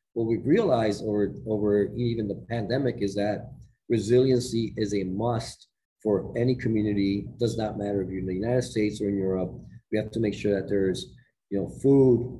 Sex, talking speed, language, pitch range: male, 195 wpm, English, 105-120 Hz